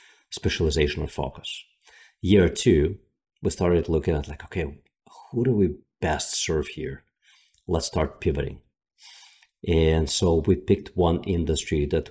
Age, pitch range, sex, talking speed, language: 40-59, 80-100 Hz, male, 135 wpm, English